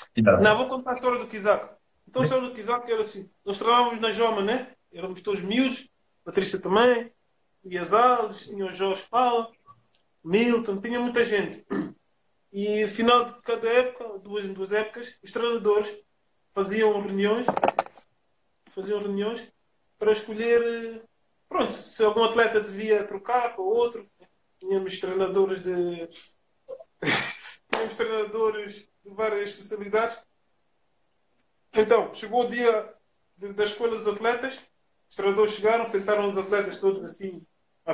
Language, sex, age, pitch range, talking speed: Portuguese, male, 20-39, 195-230 Hz, 135 wpm